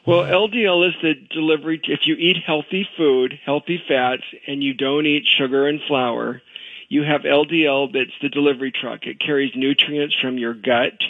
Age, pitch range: 50-69, 140-165 Hz